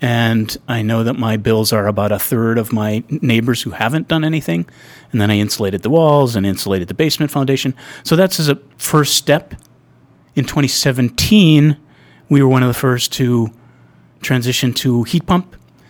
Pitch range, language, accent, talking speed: 115-140 Hz, English, American, 175 wpm